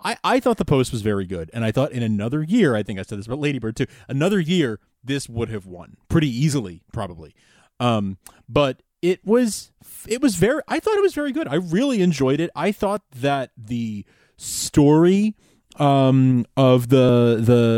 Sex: male